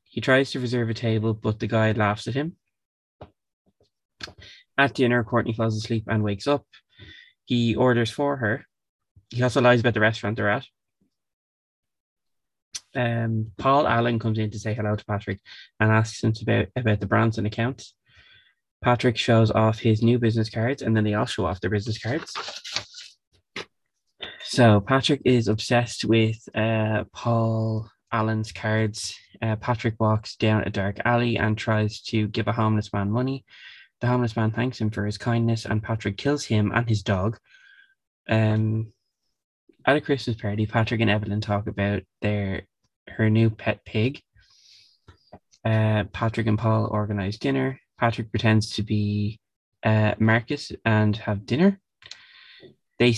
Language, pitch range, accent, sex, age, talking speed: English, 105-120 Hz, Irish, male, 20-39, 155 wpm